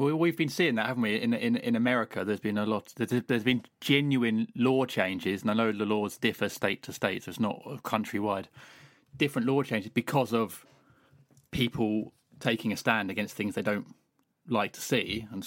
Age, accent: 30-49, British